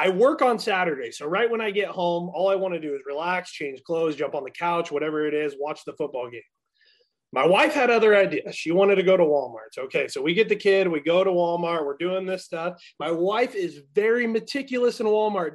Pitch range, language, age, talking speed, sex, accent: 170-240 Hz, English, 30-49, 240 wpm, male, American